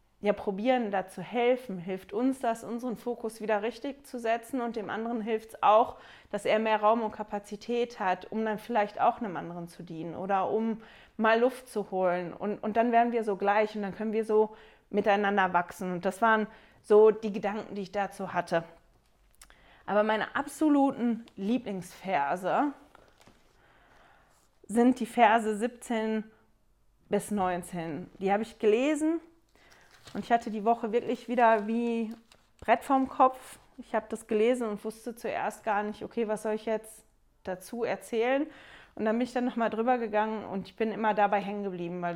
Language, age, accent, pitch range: German, 20-39, German, 195-230 Hz